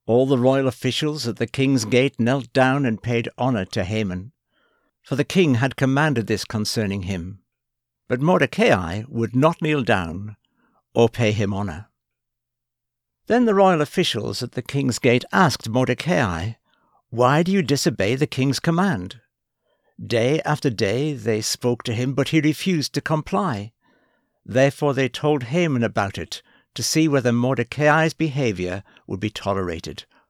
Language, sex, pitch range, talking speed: English, male, 110-150 Hz, 150 wpm